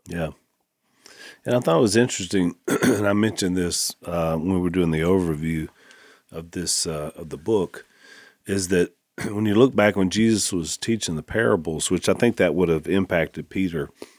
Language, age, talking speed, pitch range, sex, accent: English, 40-59, 180 wpm, 85-100 Hz, male, American